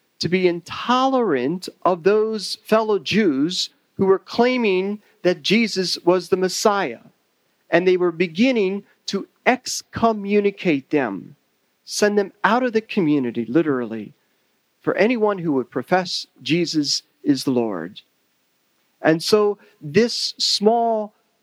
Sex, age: male, 40-59